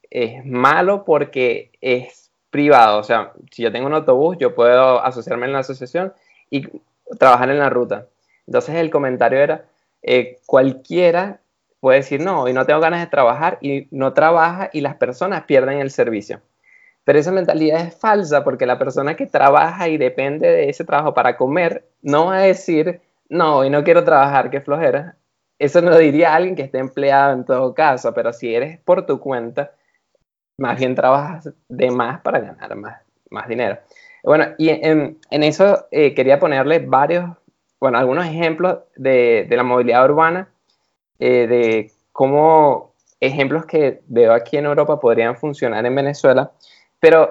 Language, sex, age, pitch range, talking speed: Spanish, male, 20-39, 130-170 Hz, 165 wpm